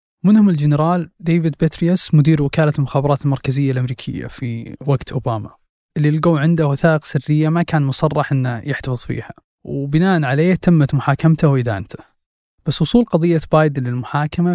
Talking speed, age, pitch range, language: 135 wpm, 20-39, 135-165 Hz, Arabic